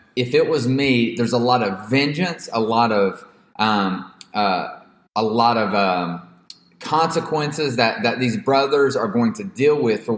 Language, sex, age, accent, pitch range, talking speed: English, male, 30-49, American, 110-135 Hz, 170 wpm